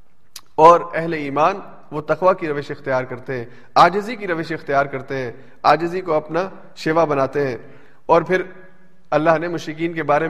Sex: male